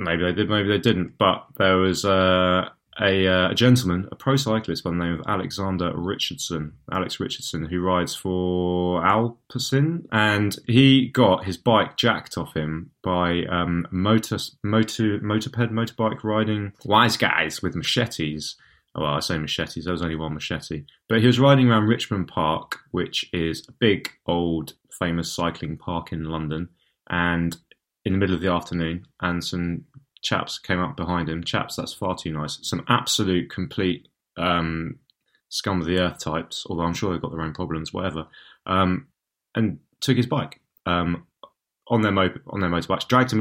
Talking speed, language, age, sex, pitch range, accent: 170 wpm, English, 20-39, male, 85-105 Hz, British